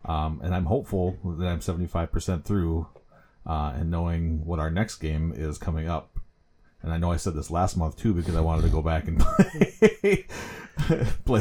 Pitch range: 80-95 Hz